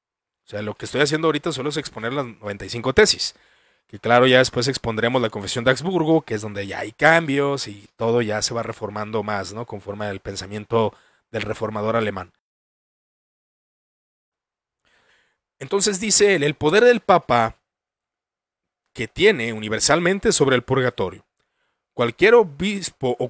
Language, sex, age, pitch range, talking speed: Spanish, male, 40-59, 115-160 Hz, 150 wpm